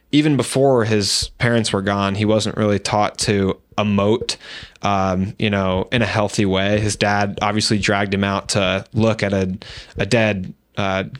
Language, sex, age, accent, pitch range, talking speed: English, male, 20-39, American, 100-115 Hz, 170 wpm